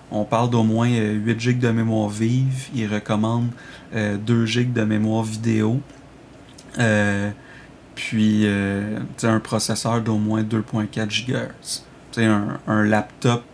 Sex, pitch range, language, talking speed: male, 110-125 Hz, French, 135 wpm